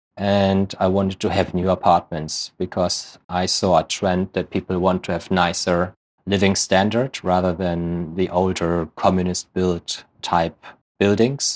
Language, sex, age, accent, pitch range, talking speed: English, male, 30-49, German, 85-95 Hz, 145 wpm